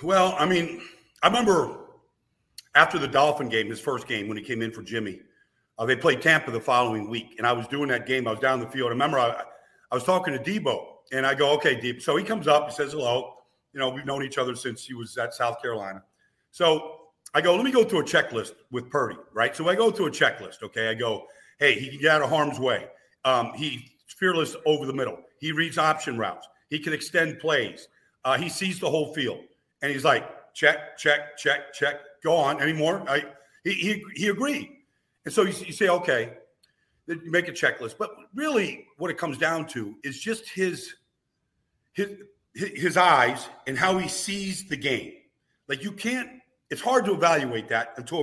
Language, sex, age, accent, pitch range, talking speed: English, male, 50-69, American, 130-185 Hz, 215 wpm